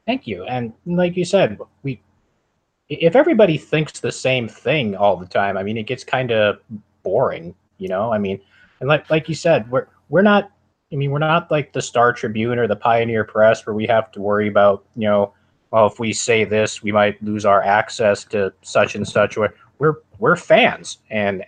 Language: English